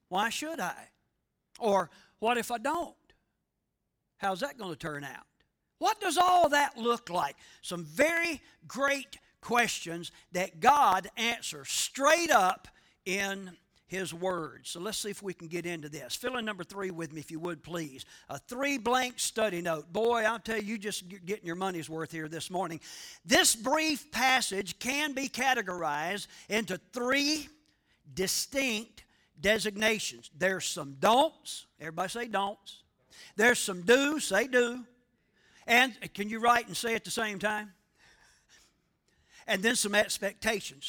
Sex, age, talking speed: male, 50-69, 155 wpm